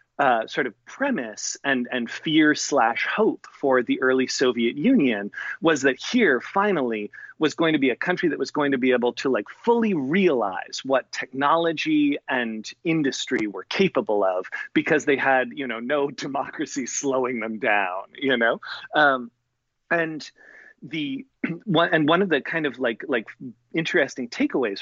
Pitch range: 120-170 Hz